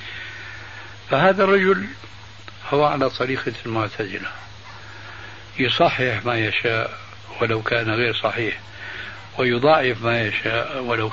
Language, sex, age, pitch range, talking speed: Arabic, male, 60-79, 115-145 Hz, 90 wpm